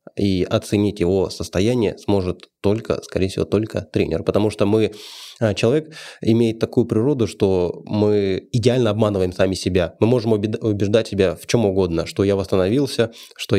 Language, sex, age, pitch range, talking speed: Russian, male, 20-39, 95-110 Hz, 150 wpm